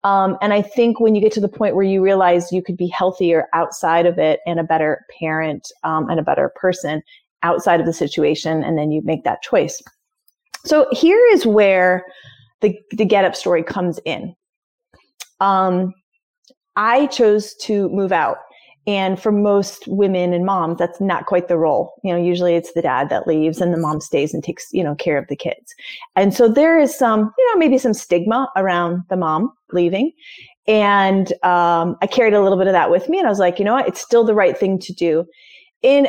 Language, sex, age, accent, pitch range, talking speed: English, female, 30-49, American, 175-235 Hz, 210 wpm